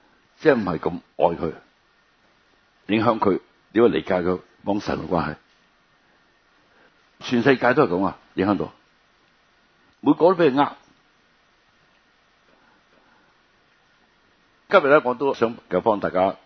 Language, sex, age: Chinese, male, 60-79